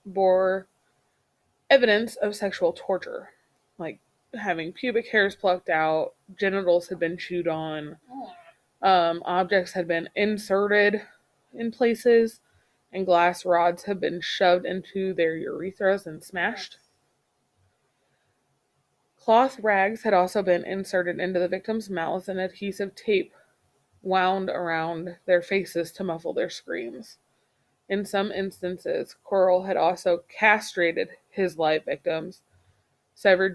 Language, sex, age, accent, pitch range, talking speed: English, female, 20-39, American, 175-205 Hz, 120 wpm